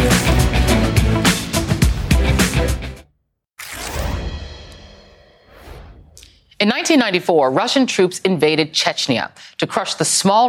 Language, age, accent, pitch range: English, 30-49, American, 135-185 Hz